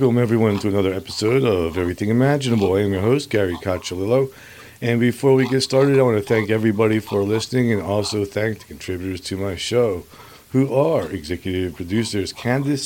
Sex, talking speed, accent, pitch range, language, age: male, 180 wpm, American, 95-120 Hz, English, 40-59